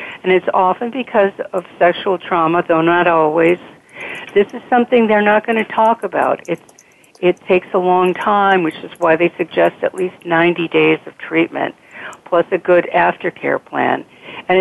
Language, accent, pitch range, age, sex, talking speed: English, American, 170-215 Hz, 60-79, female, 175 wpm